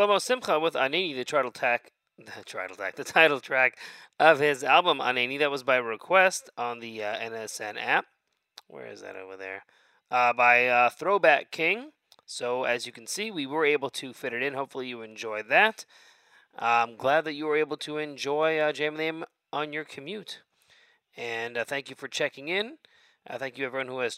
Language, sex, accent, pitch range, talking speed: English, male, American, 120-155 Hz, 180 wpm